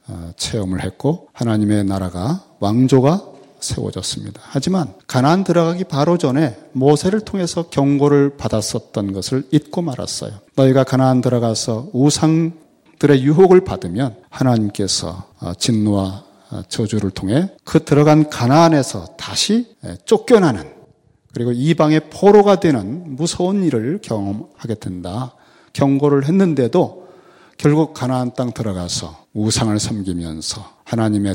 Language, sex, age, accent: Korean, male, 40-59, native